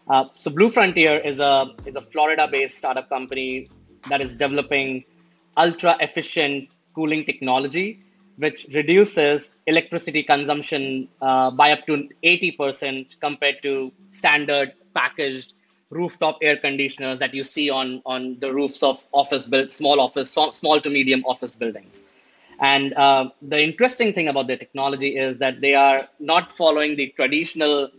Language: English